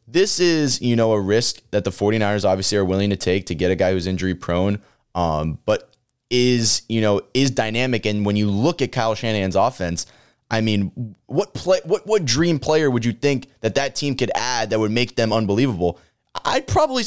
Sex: male